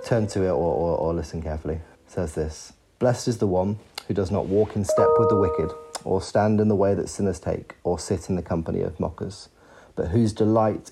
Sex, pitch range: male, 90-110 Hz